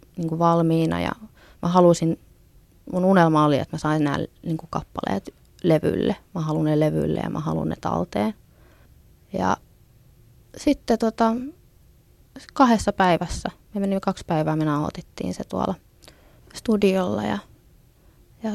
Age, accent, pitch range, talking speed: 20-39, native, 140-215 Hz, 125 wpm